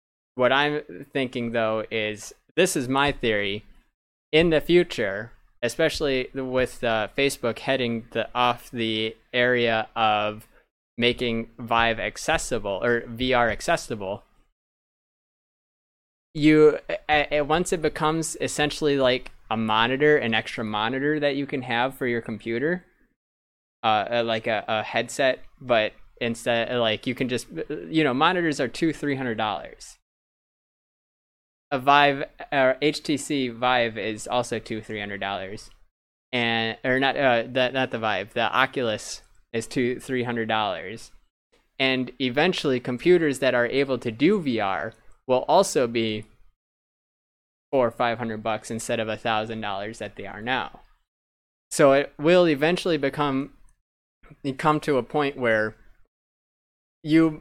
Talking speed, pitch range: 135 wpm, 110-145 Hz